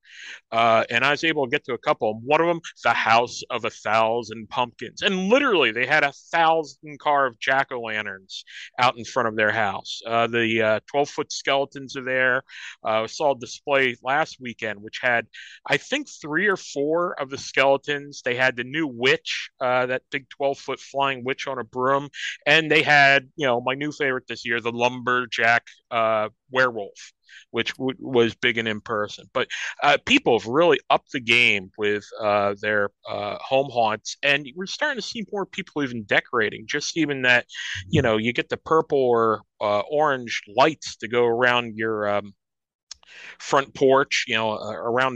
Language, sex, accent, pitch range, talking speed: English, male, American, 115-145 Hz, 185 wpm